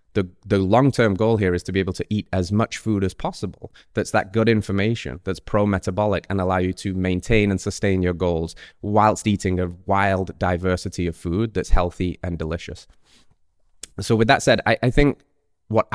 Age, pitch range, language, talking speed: 20-39, 90-110 Hz, English, 190 wpm